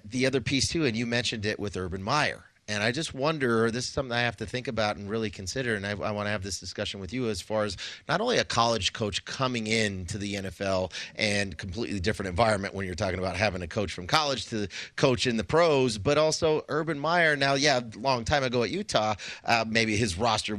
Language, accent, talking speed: English, American, 240 wpm